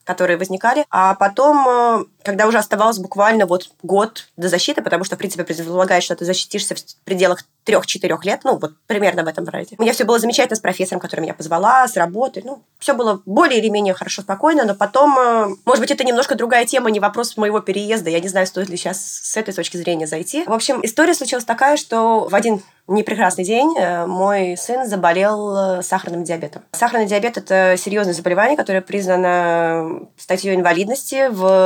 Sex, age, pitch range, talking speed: female, 20-39, 180-225 Hz, 190 wpm